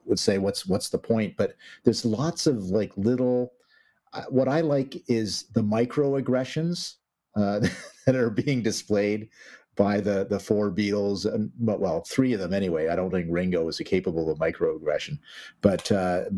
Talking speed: 170 wpm